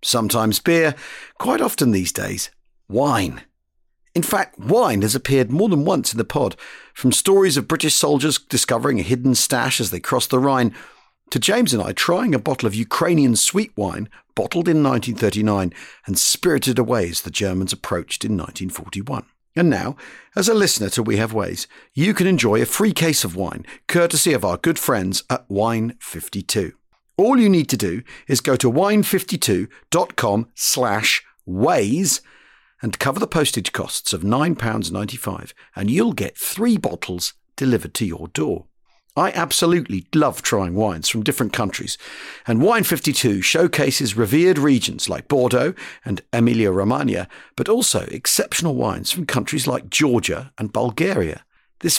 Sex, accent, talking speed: male, British, 155 wpm